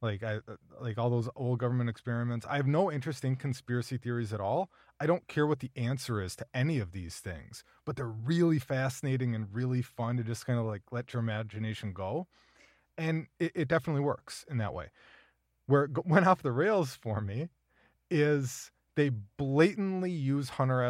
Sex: male